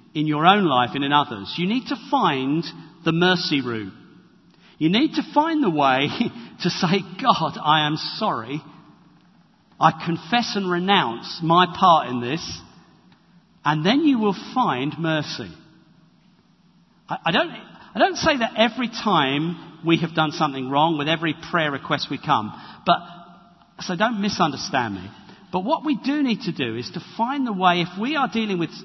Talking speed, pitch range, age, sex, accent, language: 170 wpm, 155-205 Hz, 50-69, male, British, English